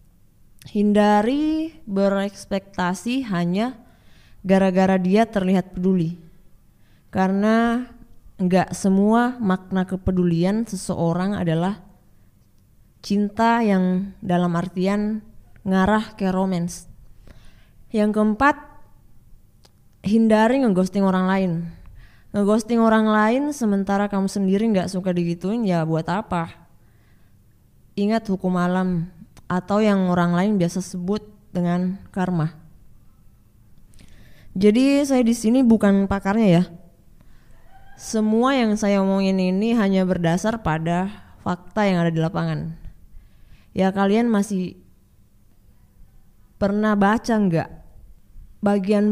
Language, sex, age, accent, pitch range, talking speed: Indonesian, female, 20-39, native, 170-205 Hz, 95 wpm